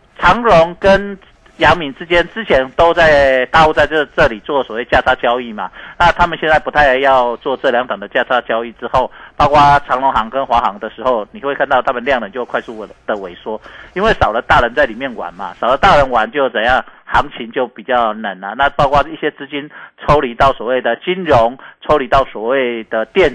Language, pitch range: Chinese, 120-160 Hz